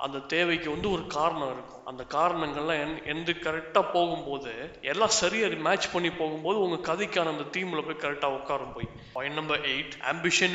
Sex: male